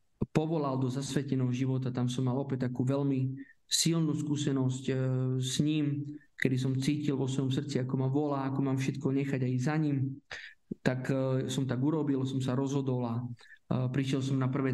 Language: Slovak